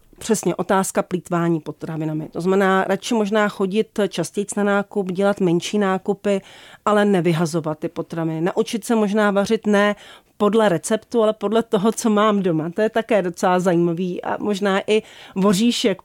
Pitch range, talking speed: 185-215 Hz, 155 wpm